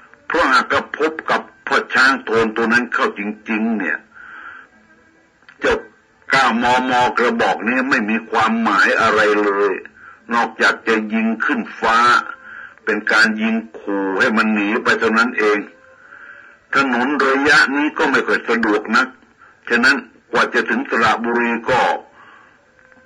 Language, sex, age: Thai, male, 60-79